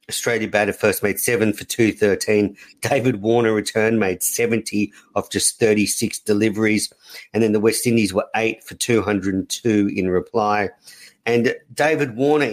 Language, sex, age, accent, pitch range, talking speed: English, male, 50-69, Australian, 105-120 Hz, 145 wpm